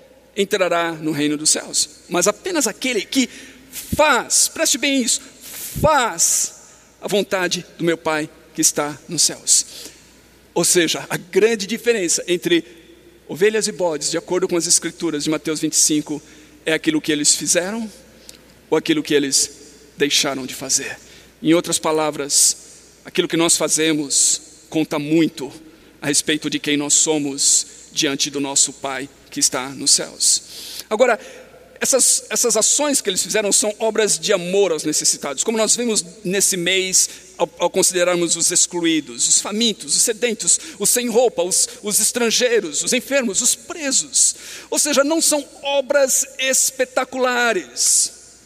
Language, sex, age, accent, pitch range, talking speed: Portuguese, male, 50-69, Brazilian, 155-235 Hz, 145 wpm